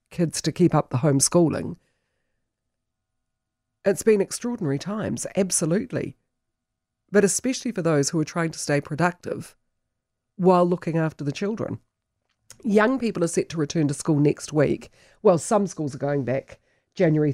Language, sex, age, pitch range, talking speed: English, female, 40-59, 140-175 Hz, 150 wpm